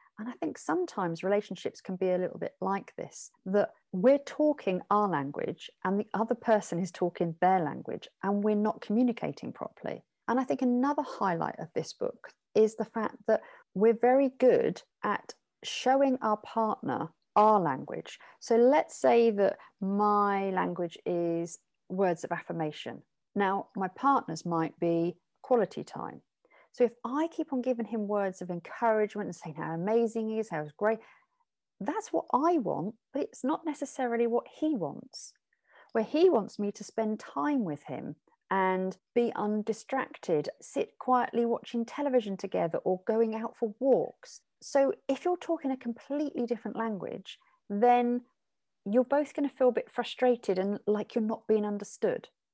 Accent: British